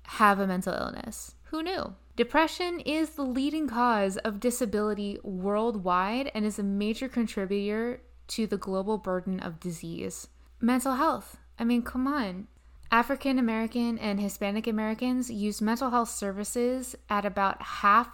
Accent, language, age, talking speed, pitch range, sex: American, English, 20-39, 140 wpm, 185-240 Hz, female